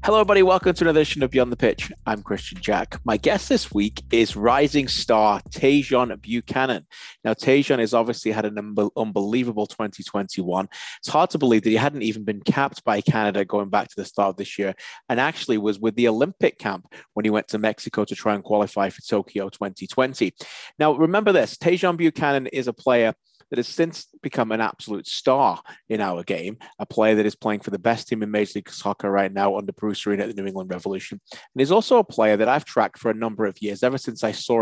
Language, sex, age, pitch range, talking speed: English, male, 30-49, 105-130 Hz, 220 wpm